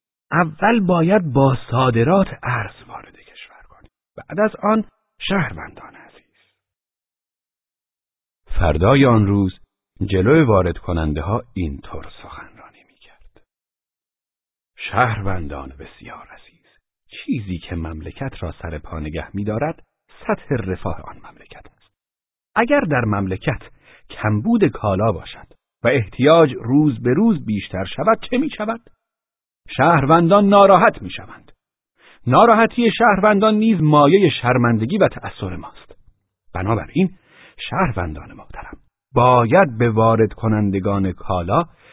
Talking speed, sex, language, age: 105 wpm, male, Persian, 50-69